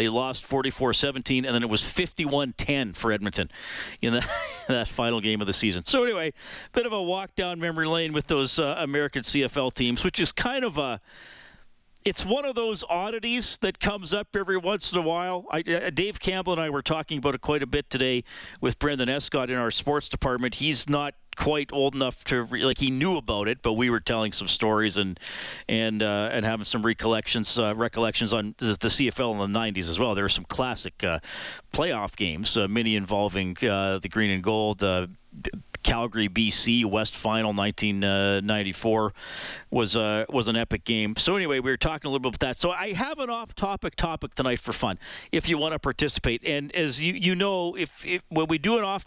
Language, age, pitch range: English, 40-59, 110-165 Hz